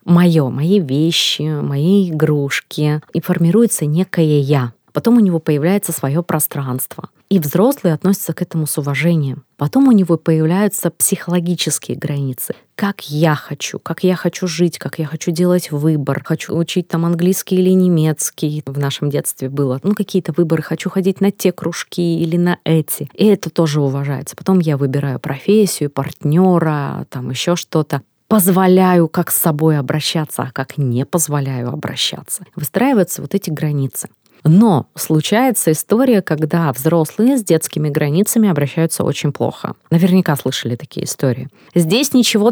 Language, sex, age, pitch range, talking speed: Russian, female, 20-39, 150-195 Hz, 145 wpm